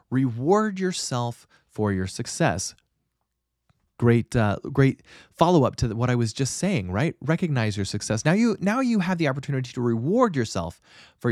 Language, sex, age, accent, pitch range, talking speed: English, male, 30-49, American, 105-160 Hz, 160 wpm